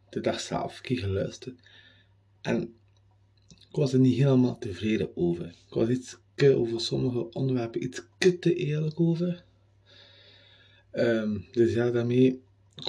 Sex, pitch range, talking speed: male, 100-125 Hz, 135 wpm